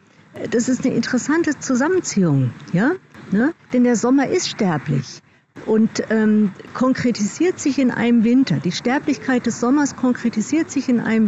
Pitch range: 180-235 Hz